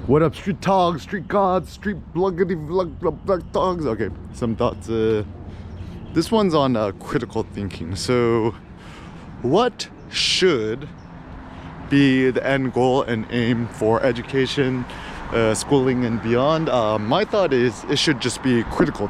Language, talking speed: English, 140 wpm